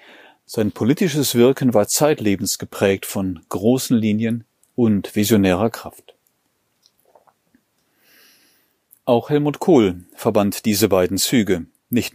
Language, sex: German, male